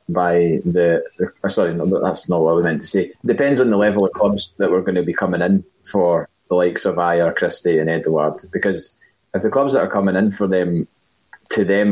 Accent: British